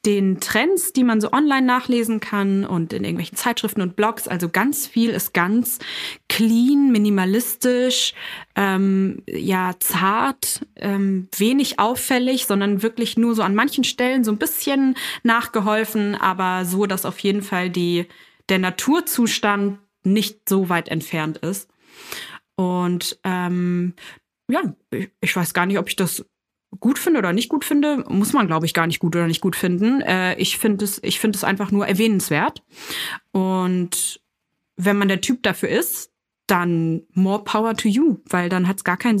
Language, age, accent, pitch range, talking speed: German, 20-39, German, 185-230 Hz, 160 wpm